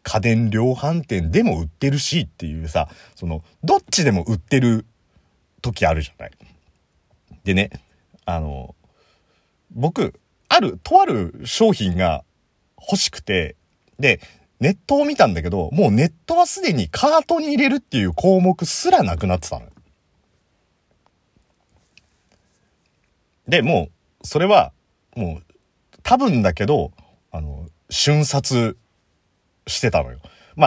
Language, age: Japanese, 40-59